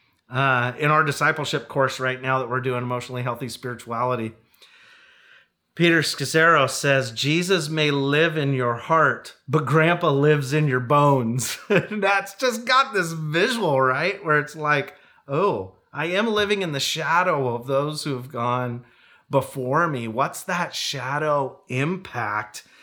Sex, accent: male, American